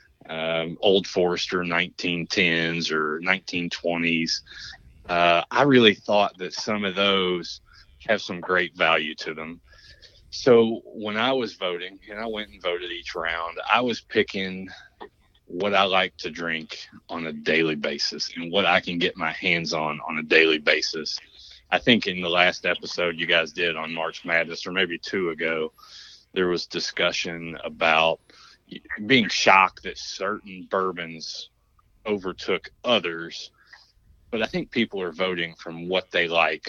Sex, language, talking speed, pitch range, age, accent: male, English, 150 wpm, 80-95 Hz, 30-49, American